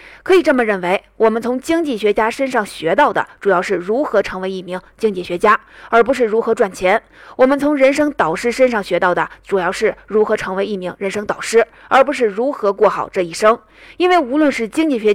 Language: Chinese